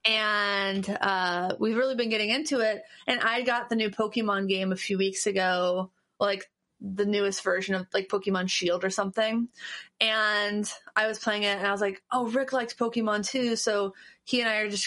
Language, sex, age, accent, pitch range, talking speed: English, female, 20-39, American, 200-240 Hz, 200 wpm